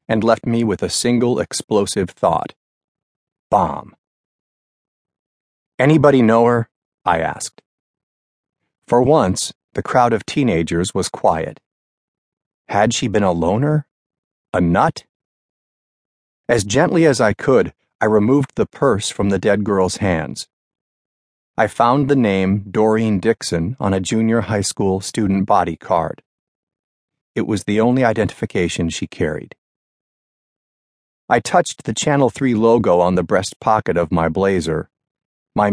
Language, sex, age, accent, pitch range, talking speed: English, male, 30-49, American, 90-120 Hz, 130 wpm